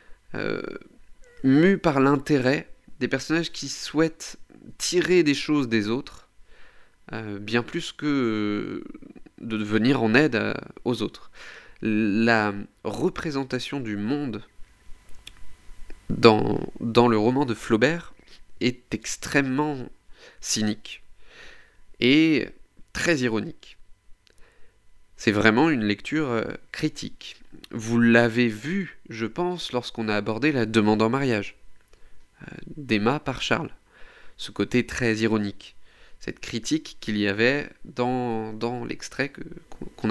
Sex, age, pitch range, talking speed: male, 30-49, 110-145 Hz, 110 wpm